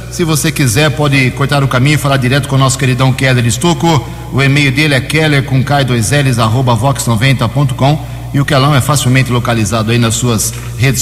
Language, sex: Portuguese, male